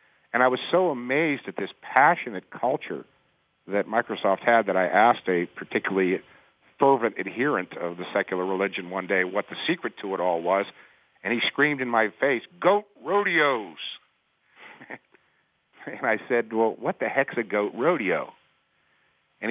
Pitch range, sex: 105-135 Hz, male